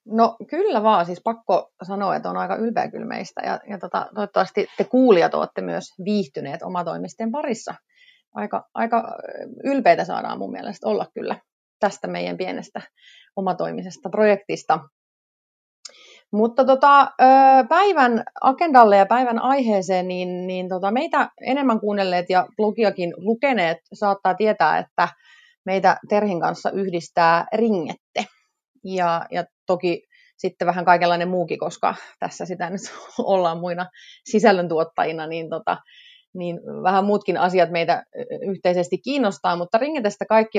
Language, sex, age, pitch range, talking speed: Finnish, female, 30-49, 180-245 Hz, 115 wpm